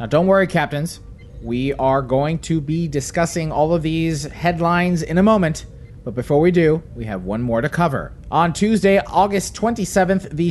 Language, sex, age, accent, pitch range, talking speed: English, male, 30-49, American, 140-190 Hz, 185 wpm